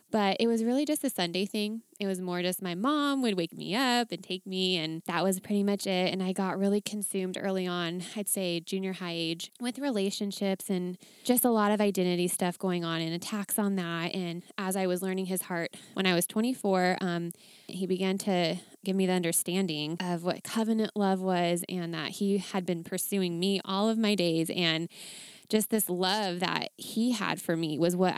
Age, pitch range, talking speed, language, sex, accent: 20-39, 180-210 Hz, 215 wpm, English, female, American